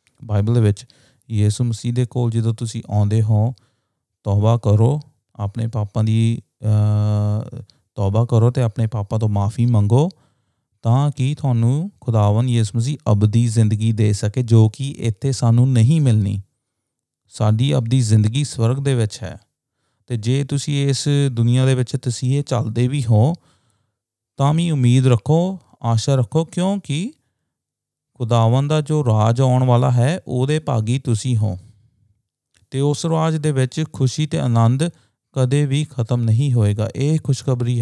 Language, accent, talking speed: English, Indian, 130 wpm